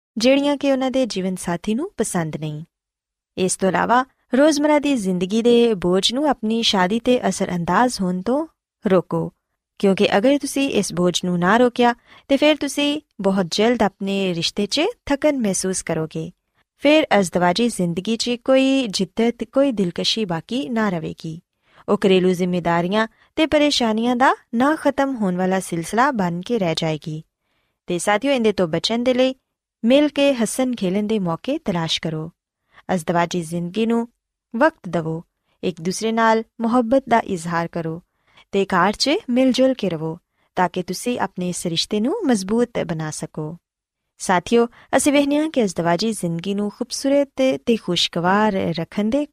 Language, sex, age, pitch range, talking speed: Punjabi, female, 20-39, 180-255 Hz, 135 wpm